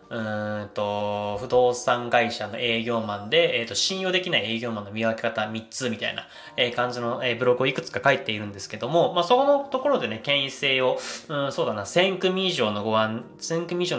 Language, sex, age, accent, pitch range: Japanese, male, 20-39, native, 115-190 Hz